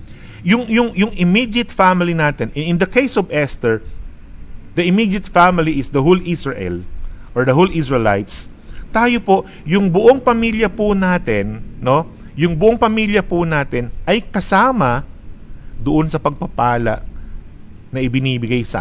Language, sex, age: Filipino, male, 50-69